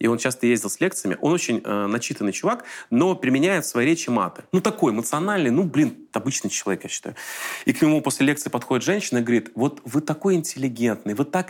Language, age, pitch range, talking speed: Russian, 30-49, 120-170 Hz, 210 wpm